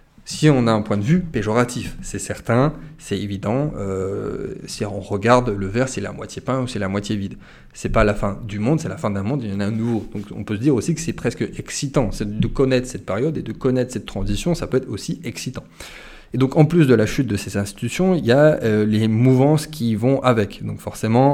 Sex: male